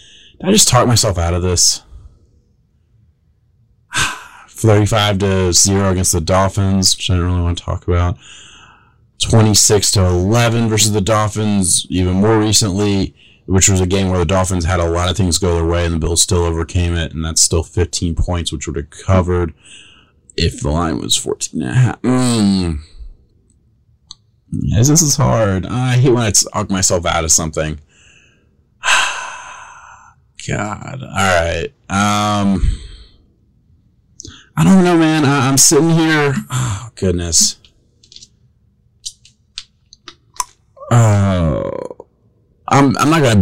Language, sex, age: English, male, 30-49